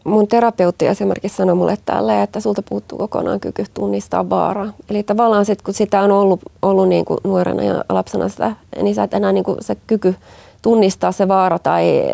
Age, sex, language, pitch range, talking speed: 20-39, female, Finnish, 180-210 Hz, 195 wpm